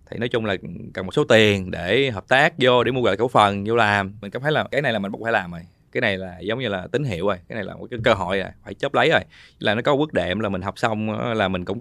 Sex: male